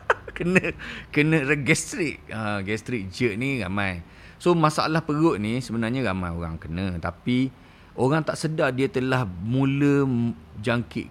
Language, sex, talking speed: Malay, male, 130 wpm